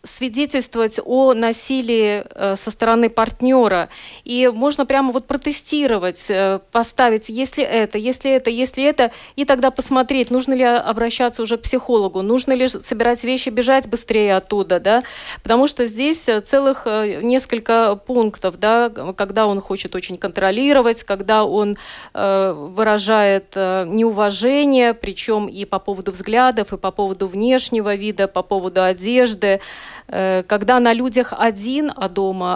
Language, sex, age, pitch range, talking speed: Russian, female, 20-39, 205-260 Hz, 130 wpm